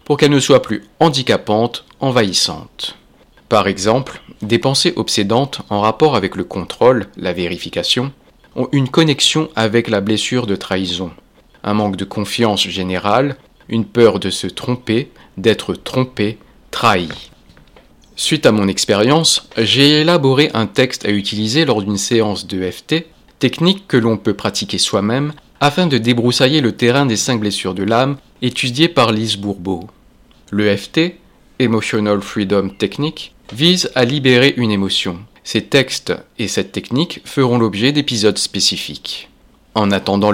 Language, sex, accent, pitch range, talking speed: French, male, French, 100-130 Hz, 145 wpm